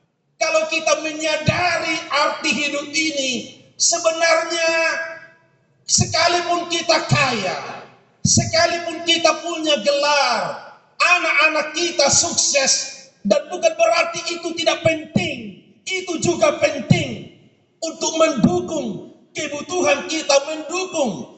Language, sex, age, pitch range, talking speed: Indonesian, male, 40-59, 190-315 Hz, 85 wpm